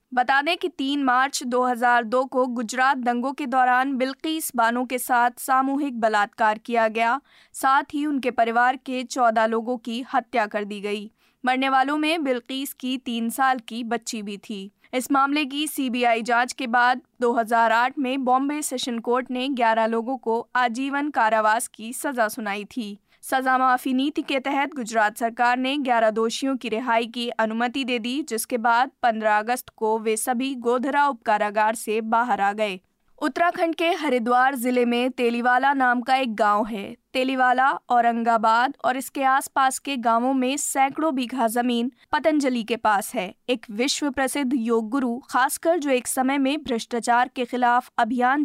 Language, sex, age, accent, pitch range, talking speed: Hindi, female, 20-39, native, 235-270 Hz, 165 wpm